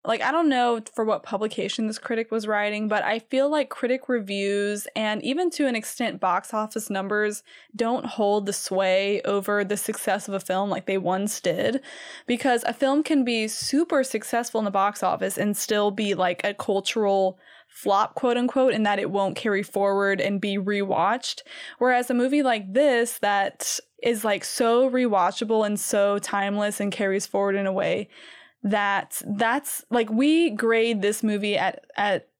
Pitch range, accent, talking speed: 205-255 Hz, American, 180 wpm